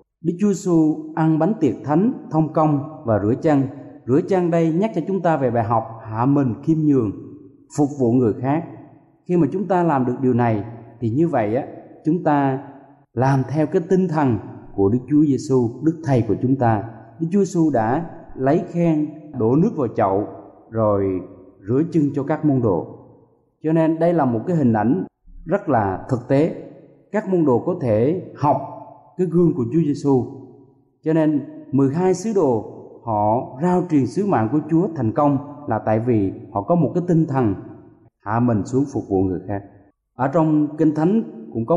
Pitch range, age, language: 115-165 Hz, 20-39, Thai